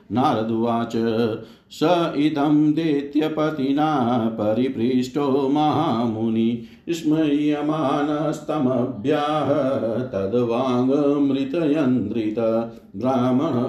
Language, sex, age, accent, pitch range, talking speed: Hindi, male, 50-69, native, 115-150 Hz, 45 wpm